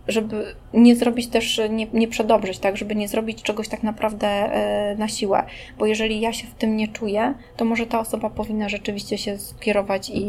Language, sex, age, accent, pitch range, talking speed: Polish, female, 20-39, native, 200-230 Hz, 185 wpm